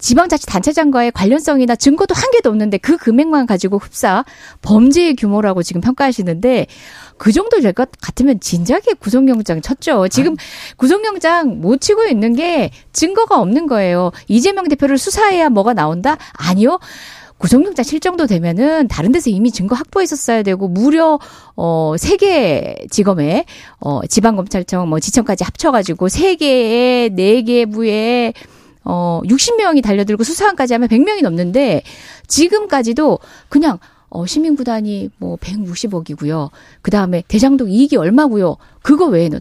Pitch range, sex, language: 200-310 Hz, female, Korean